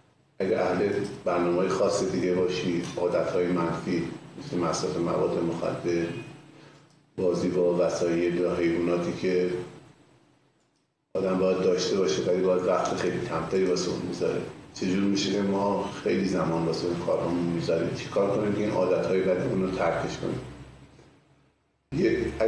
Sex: male